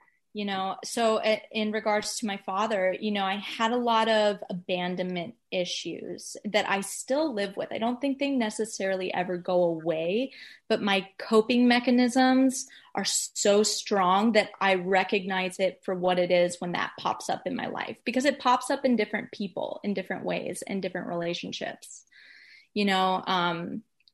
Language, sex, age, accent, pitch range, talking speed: English, female, 20-39, American, 185-225 Hz, 170 wpm